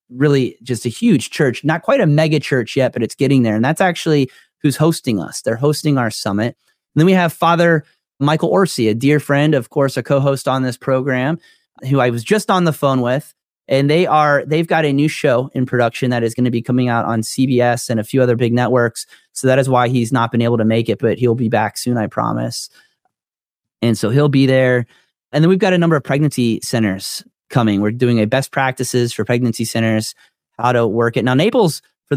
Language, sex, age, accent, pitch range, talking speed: English, male, 30-49, American, 120-145 Hz, 225 wpm